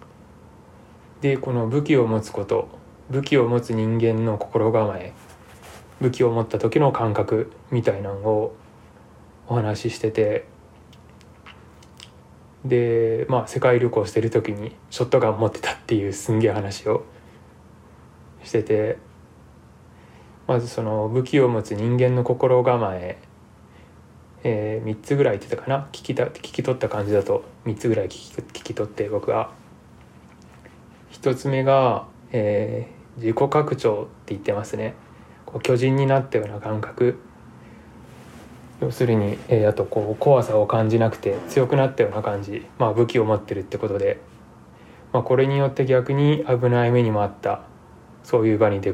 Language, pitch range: Japanese, 110-125 Hz